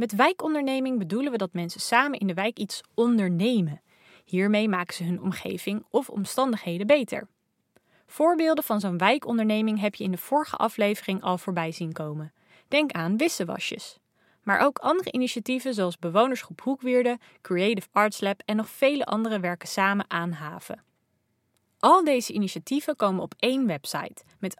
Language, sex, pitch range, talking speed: Dutch, female, 185-250 Hz, 155 wpm